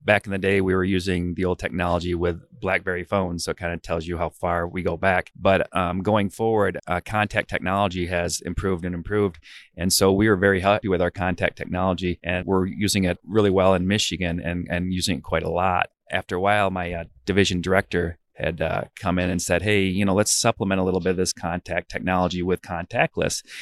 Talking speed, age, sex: 220 wpm, 30-49, male